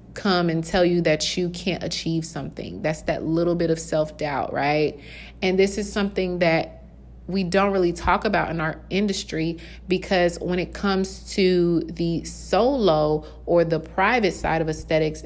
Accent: American